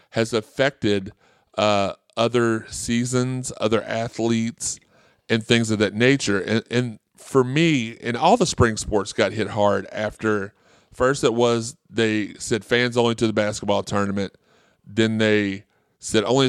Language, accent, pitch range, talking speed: English, American, 105-120 Hz, 145 wpm